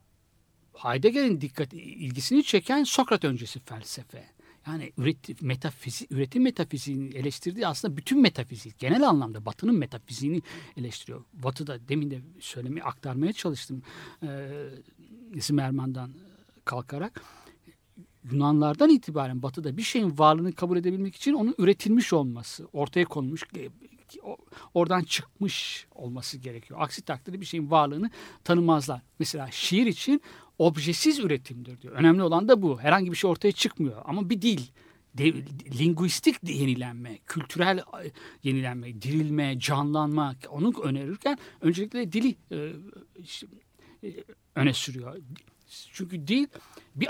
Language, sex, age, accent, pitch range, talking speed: Turkish, male, 60-79, native, 140-190 Hz, 115 wpm